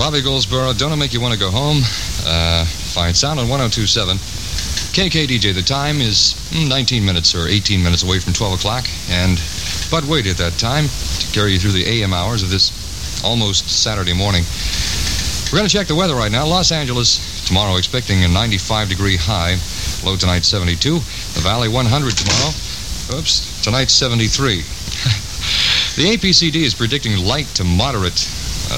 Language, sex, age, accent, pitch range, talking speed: English, male, 60-79, American, 90-135 Hz, 160 wpm